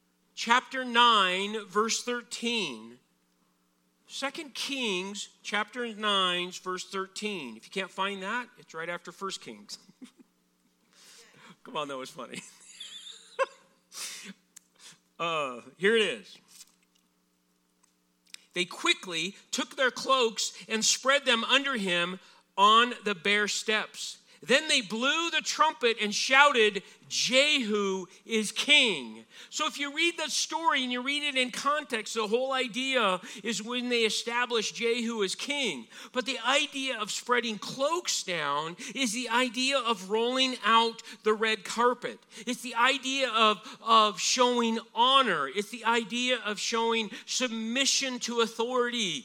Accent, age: American, 40-59